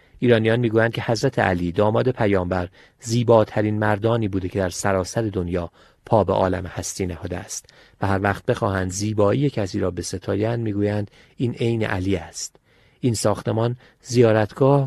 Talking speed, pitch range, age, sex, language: 145 wpm, 95-125 Hz, 40-59, male, Persian